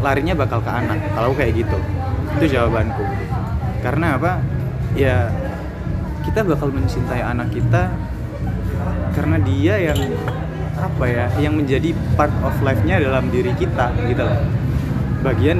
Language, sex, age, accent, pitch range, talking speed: Indonesian, male, 20-39, native, 95-130 Hz, 130 wpm